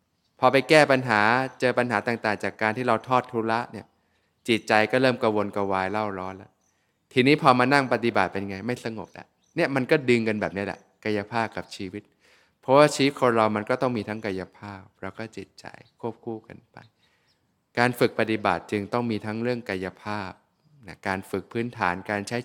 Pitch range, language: 95-115 Hz, Thai